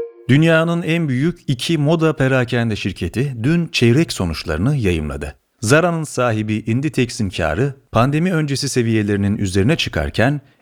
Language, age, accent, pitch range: Turkish, 40-59, native, 105-155 Hz